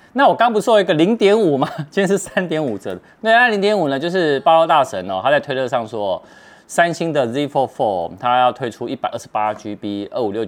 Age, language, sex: 30-49, Chinese, male